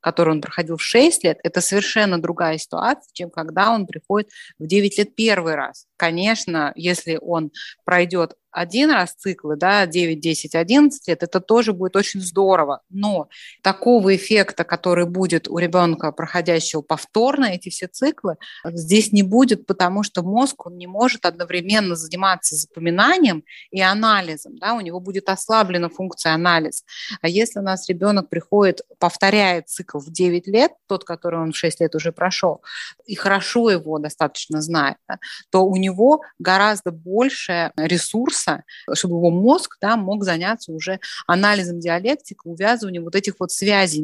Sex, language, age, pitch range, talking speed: female, Russian, 30-49, 170-205 Hz, 155 wpm